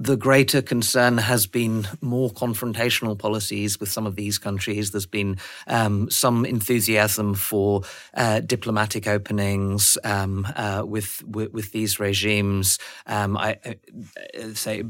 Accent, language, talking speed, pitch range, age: British, English, 135 wpm, 105-120 Hz, 30-49